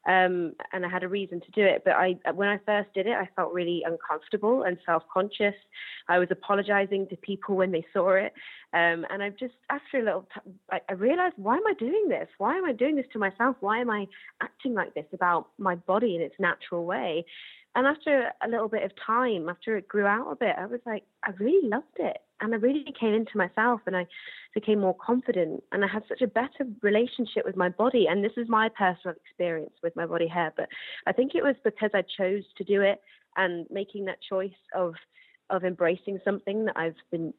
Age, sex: 20-39, female